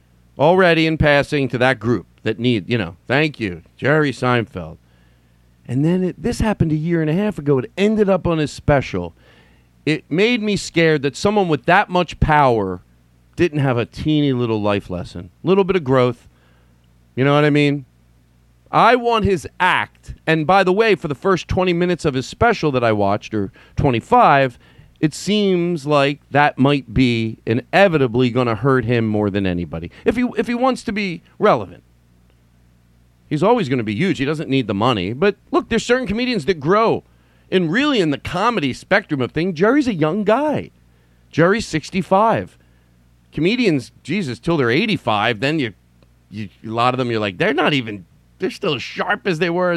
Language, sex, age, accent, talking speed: English, male, 40-59, American, 185 wpm